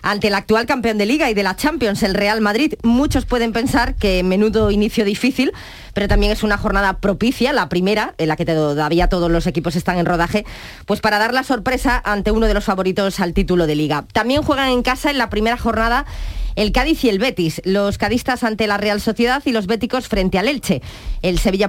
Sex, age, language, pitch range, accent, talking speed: female, 20-39, Spanish, 190-245 Hz, Spanish, 220 wpm